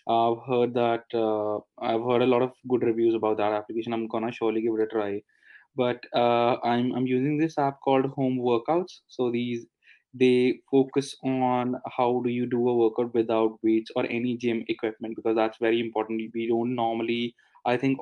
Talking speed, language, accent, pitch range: 190 wpm, English, Indian, 115-125 Hz